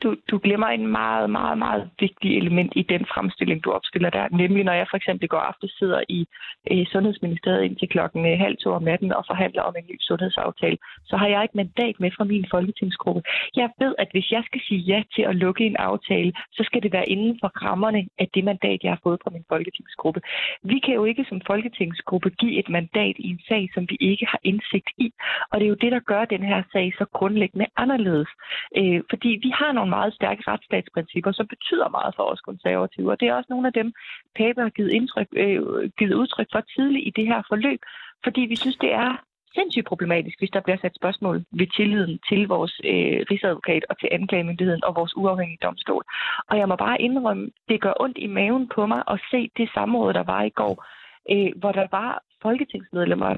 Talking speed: 210 wpm